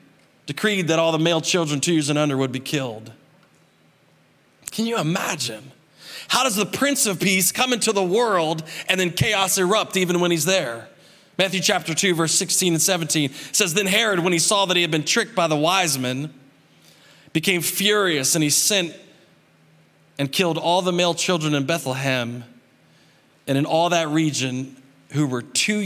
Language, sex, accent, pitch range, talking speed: English, male, American, 130-175 Hz, 175 wpm